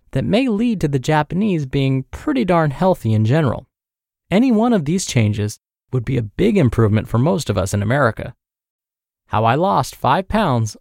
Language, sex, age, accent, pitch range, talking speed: English, male, 20-39, American, 115-180 Hz, 185 wpm